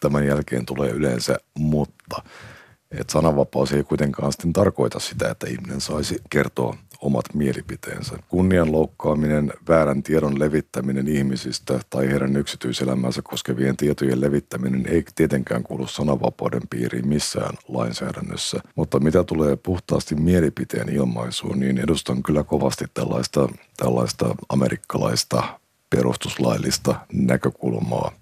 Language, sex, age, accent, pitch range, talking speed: Finnish, male, 50-69, native, 65-80 Hz, 110 wpm